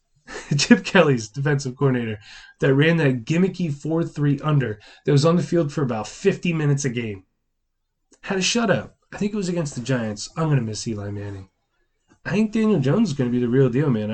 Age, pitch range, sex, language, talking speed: 20-39, 120-160 Hz, male, English, 210 wpm